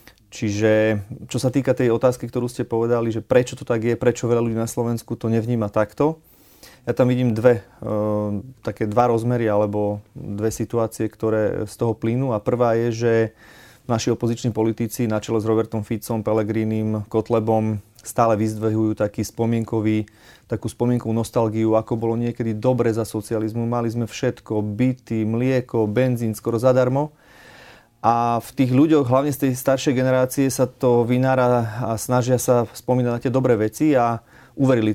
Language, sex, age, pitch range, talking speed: Slovak, male, 30-49, 110-125 Hz, 160 wpm